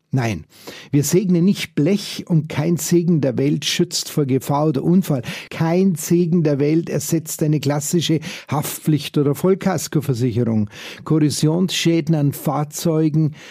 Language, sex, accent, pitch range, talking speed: German, male, Austrian, 140-170 Hz, 125 wpm